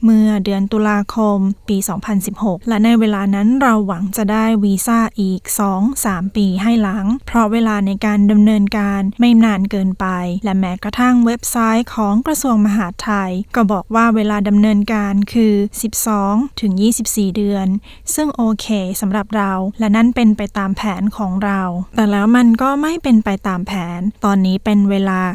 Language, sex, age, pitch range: Thai, female, 20-39, 195-230 Hz